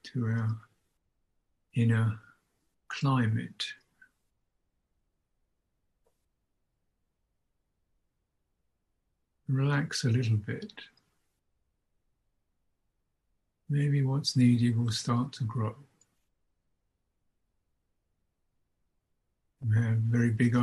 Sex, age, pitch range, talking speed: male, 60-79, 100-130 Hz, 55 wpm